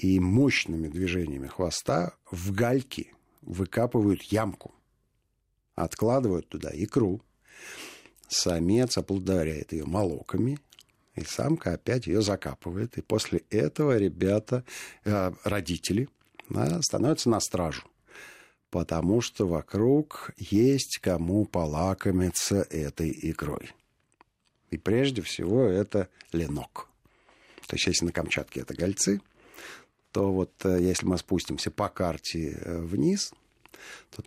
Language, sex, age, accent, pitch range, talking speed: Russian, male, 50-69, native, 85-110 Hz, 105 wpm